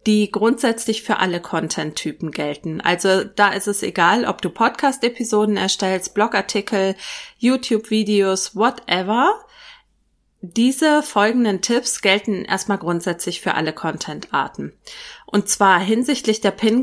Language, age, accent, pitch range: German, 30-49, German, 175-230 Hz